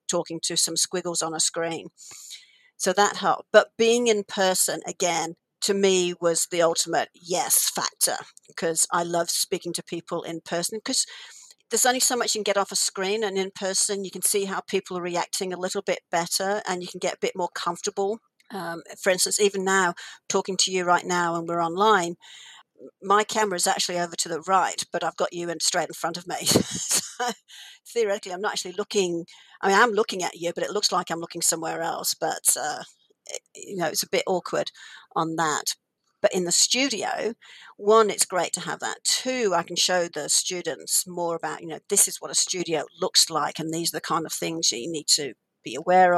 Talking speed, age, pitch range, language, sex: 215 wpm, 50-69, 170-200 Hz, English, female